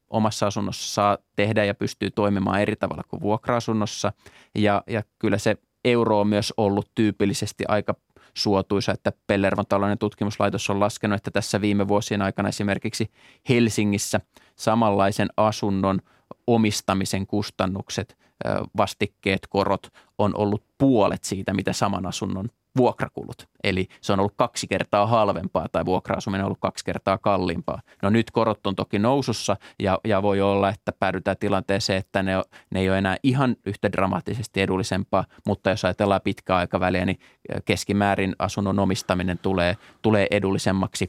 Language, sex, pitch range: Finnish, male, 95-110 Hz